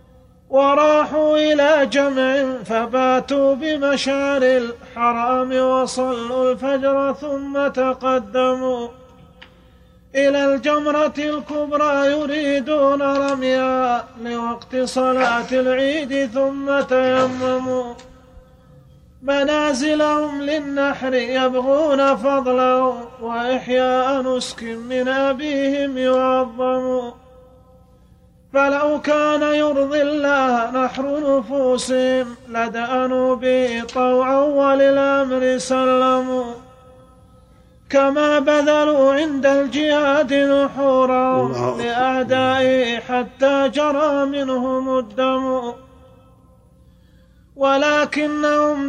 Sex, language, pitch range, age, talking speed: male, Arabic, 255-280 Hz, 30-49, 65 wpm